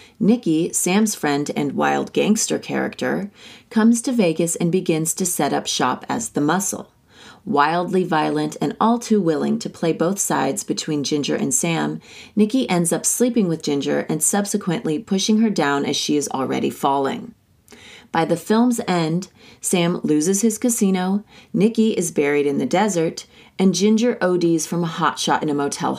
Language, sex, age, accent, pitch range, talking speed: English, female, 30-49, American, 150-210 Hz, 165 wpm